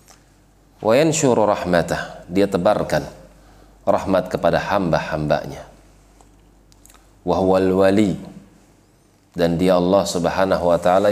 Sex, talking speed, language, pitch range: male, 70 wpm, Indonesian, 85-95 Hz